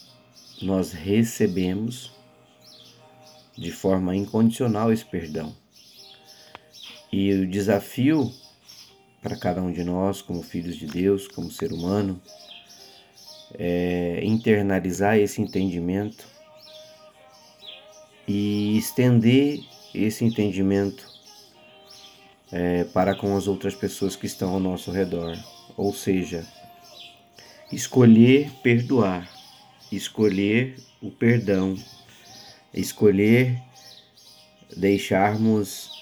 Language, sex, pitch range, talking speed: Portuguese, male, 95-115 Hz, 80 wpm